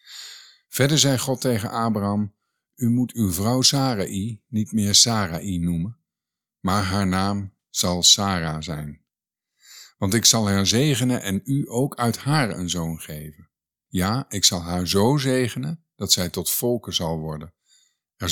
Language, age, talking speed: Dutch, 50-69, 150 wpm